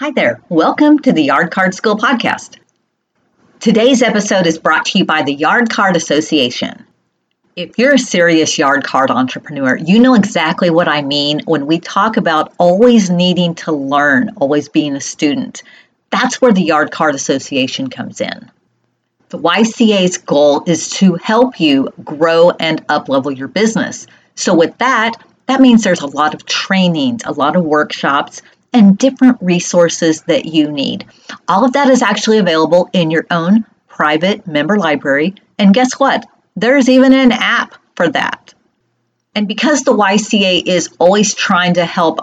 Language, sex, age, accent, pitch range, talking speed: English, female, 40-59, American, 170-245 Hz, 165 wpm